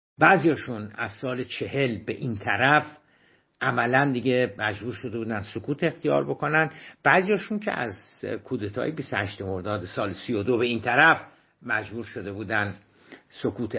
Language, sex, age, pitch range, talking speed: Persian, male, 60-79, 110-140 Hz, 130 wpm